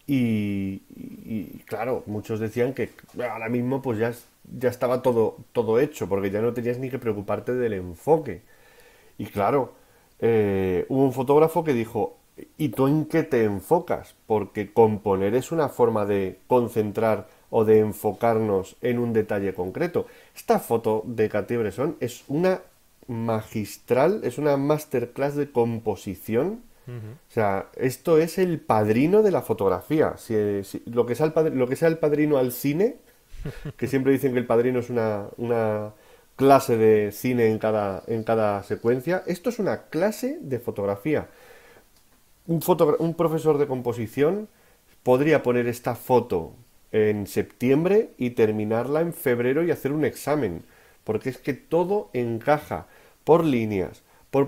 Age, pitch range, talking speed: 30-49, 110-145 Hz, 145 wpm